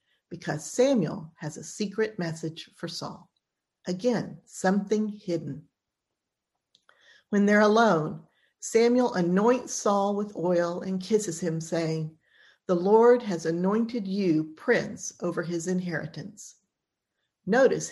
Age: 50-69